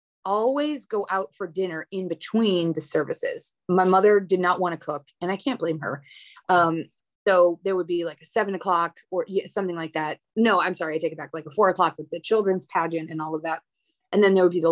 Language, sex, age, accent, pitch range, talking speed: English, female, 30-49, American, 165-200 Hz, 240 wpm